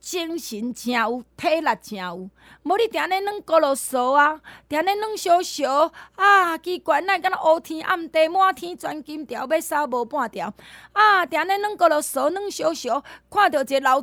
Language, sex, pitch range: Chinese, female, 235-335 Hz